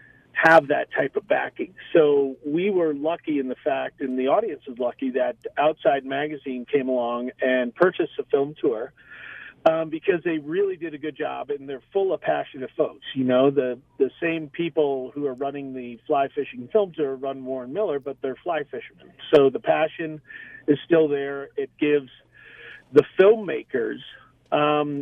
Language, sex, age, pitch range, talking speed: English, male, 40-59, 135-175 Hz, 175 wpm